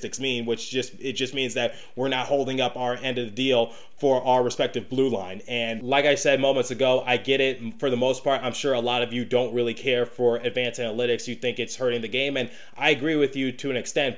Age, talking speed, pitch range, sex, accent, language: 20-39, 255 wpm, 120-135 Hz, male, American, English